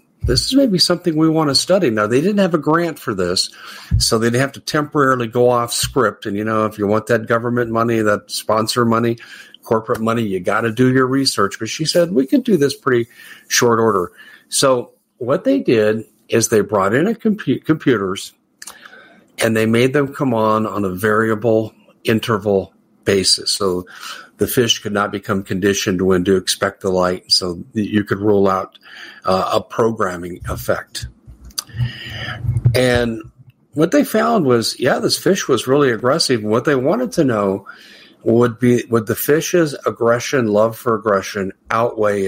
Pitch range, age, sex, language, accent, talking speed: 105-135 Hz, 50-69, male, English, American, 175 wpm